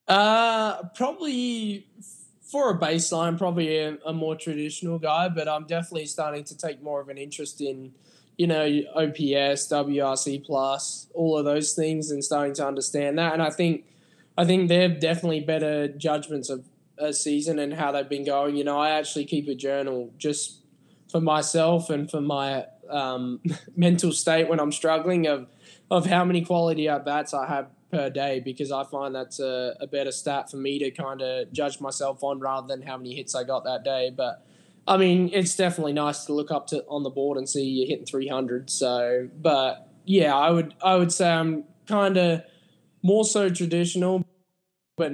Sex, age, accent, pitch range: male, 10-29, Australian, 135-170 Hz